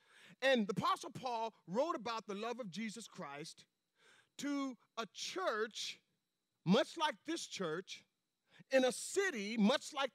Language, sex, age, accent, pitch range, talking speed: English, male, 50-69, American, 190-275 Hz, 135 wpm